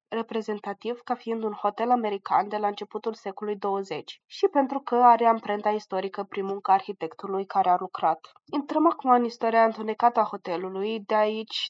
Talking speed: 165 wpm